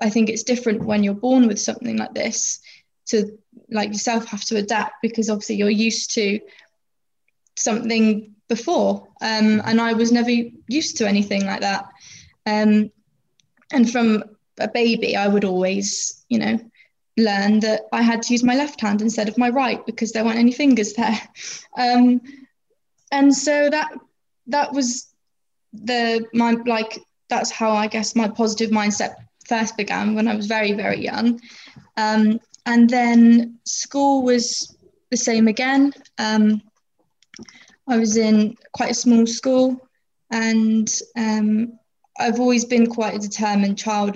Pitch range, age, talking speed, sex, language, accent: 210-235 Hz, 20-39, 150 wpm, female, English, British